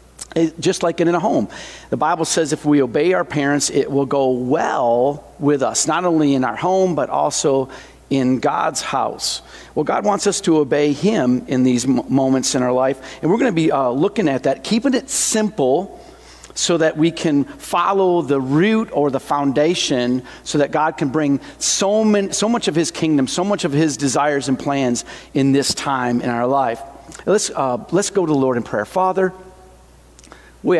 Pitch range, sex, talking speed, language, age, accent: 125-165 Hz, male, 200 wpm, English, 50-69, American